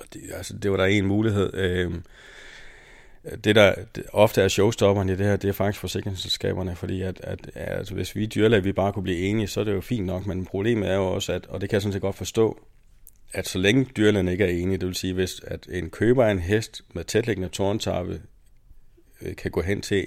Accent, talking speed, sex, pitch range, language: native, 220 wpm, male, 90-105 Hz, Danish